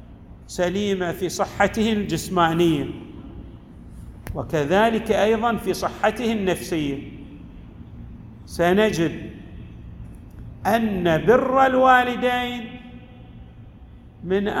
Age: 50-69